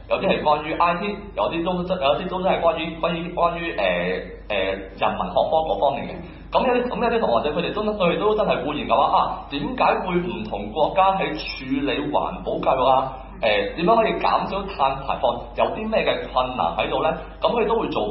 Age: 30-49